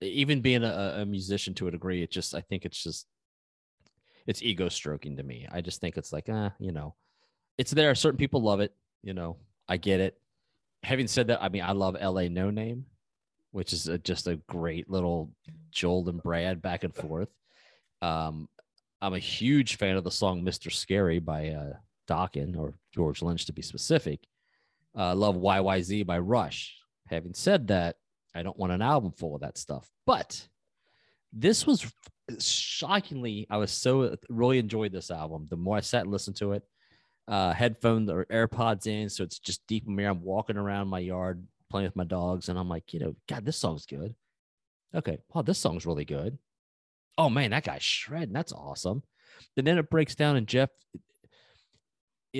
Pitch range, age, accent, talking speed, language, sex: 85-110 Hz, 30-49, American, 190 wpm, English, male